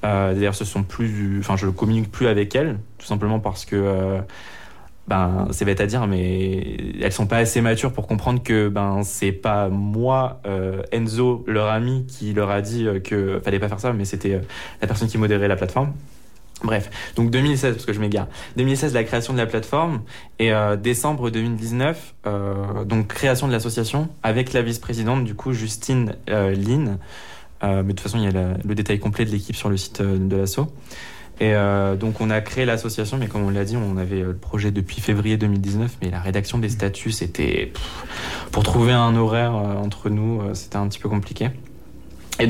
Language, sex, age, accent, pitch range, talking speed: French, male, 20-39, French, 100-120 Hz, 210 wpm